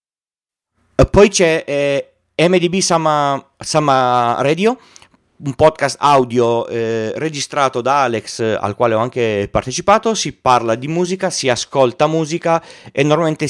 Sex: male